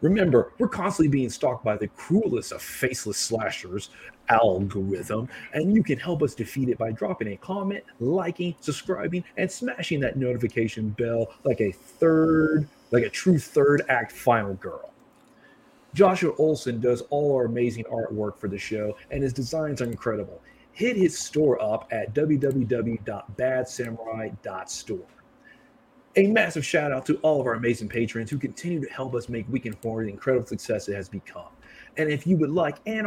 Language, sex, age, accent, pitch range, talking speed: English, male, 30-49, American, 115-160 Hz, 165 wpm